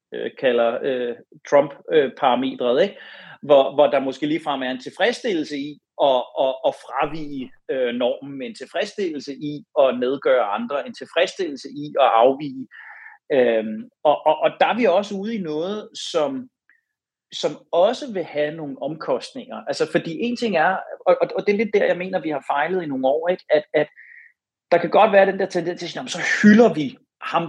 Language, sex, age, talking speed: Danish, male, 30-49, 185 wpm